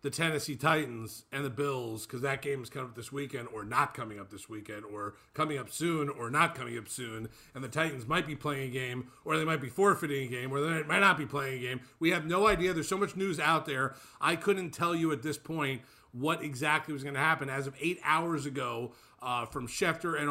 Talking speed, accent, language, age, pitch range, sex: 250 wpm, American, English, 40-59, 135-170 Hz, male